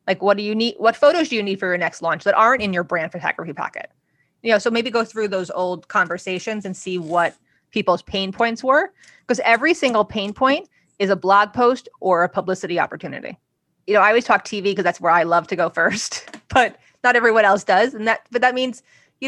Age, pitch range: 20-39, 185-230 Hz